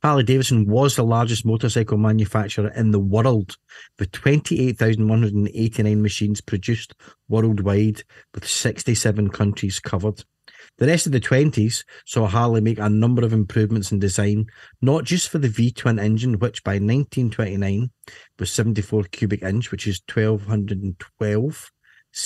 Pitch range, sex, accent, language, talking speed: 105-115 Hz, male, British, English, 130 wpm